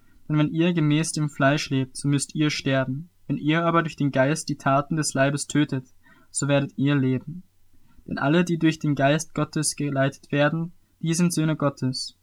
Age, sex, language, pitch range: 20-39, male, German, 135-155 Hz